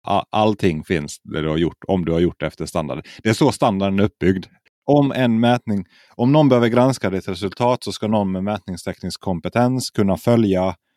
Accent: native